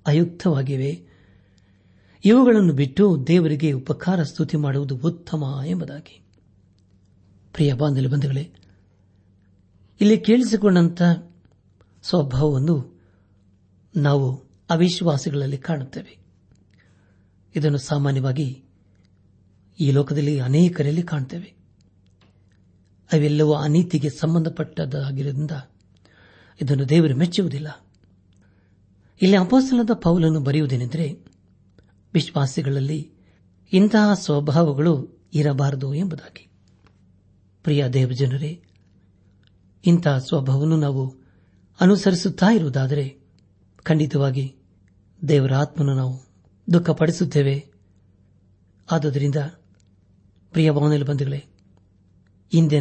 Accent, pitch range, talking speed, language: native, 95-155 Hz, 60 wpm, Kannada